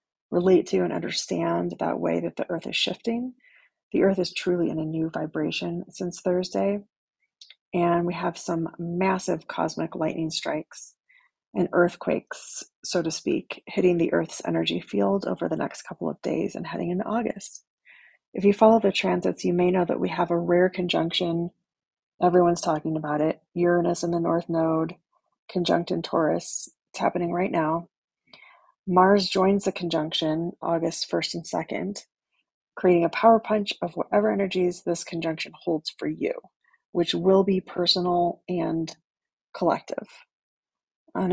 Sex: female